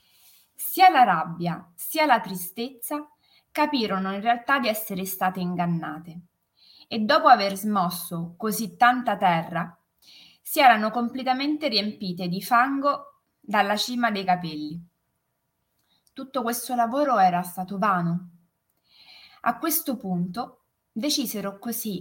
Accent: native